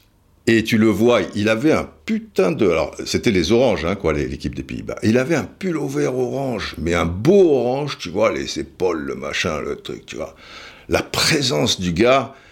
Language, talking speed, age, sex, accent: French, 195 wpm, 60-79, male, French